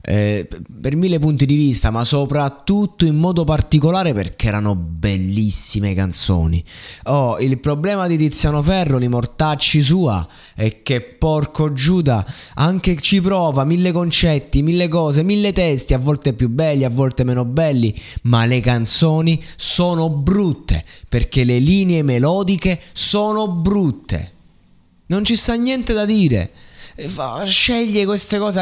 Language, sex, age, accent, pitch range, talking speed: Italian, male, 20-39, native, 115-165 Hz, 135 wpm